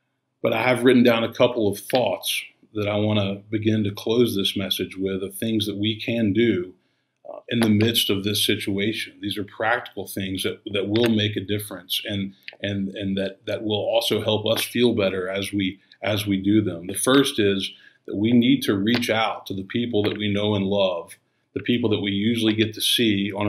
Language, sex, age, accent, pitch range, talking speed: English, male, 40-59, American, 100-115 Hz, 215 wpm